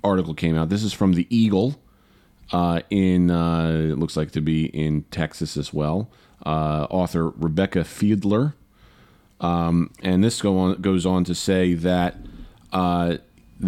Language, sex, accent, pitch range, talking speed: English, male, American, 85-105 Hz, 155 wpm